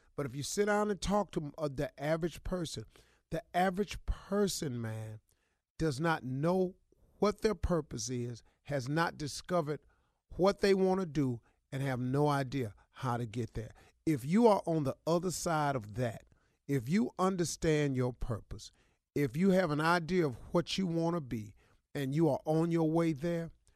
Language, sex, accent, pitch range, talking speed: English, male, American, 130-185 Hz, 175 wpm